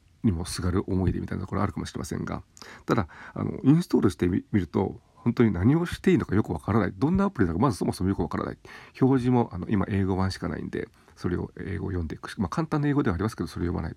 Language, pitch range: Japanese, 95-120 Hz